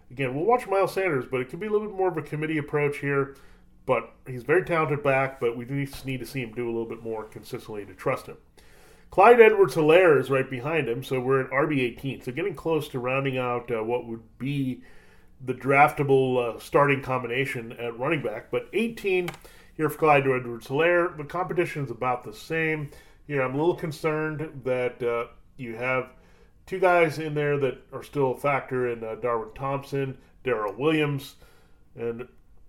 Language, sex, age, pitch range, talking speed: English, male, 30-49, 125-150 Hz, 195 wpm